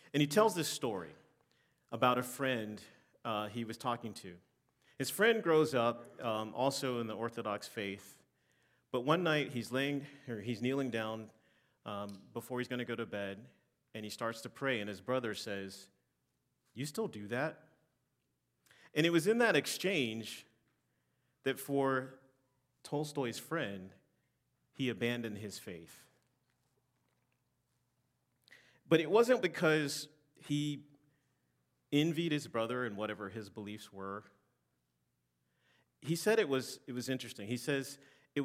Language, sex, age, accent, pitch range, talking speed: English, male, 40-59, American, 105-140 Hz, 140 wpm